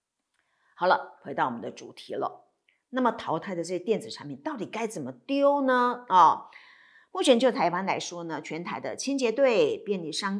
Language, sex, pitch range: Chinese, female, 175-290 Hz